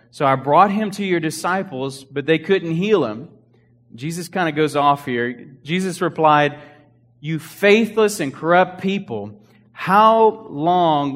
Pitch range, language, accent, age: 125-170 Hz, English, American, 30-49